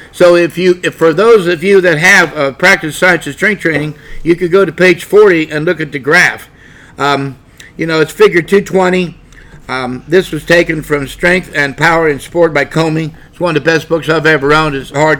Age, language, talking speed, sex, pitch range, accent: 60-79, English, 220 wpm, male, 145-180 Hz, American